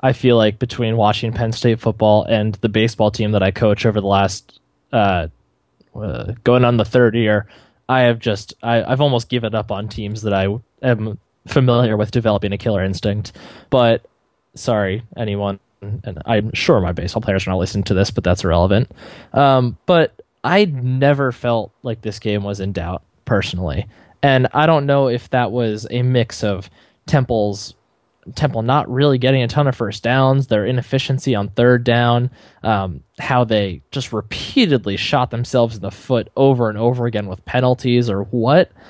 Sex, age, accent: male, 10-29, American